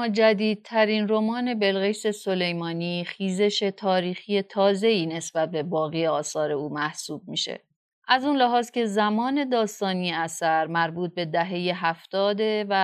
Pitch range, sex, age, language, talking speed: 165-220 Hz, female, 30-49, Persian, 125 wpm